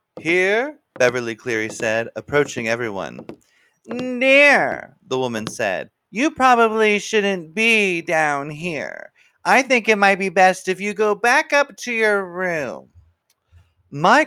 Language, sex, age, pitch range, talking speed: English, male, 30-49, 125-210 Hz, 130 wpm